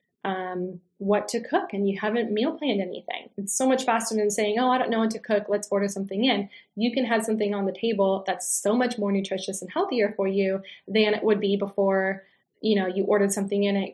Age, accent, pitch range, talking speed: 10-29, American, 195-235 Hz, 240 wpm